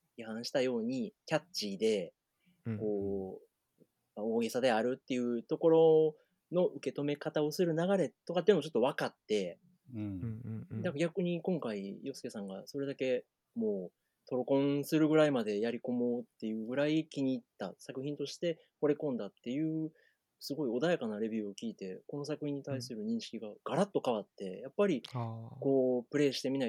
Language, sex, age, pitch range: Japanese, male, 30-49, 120-180 Hz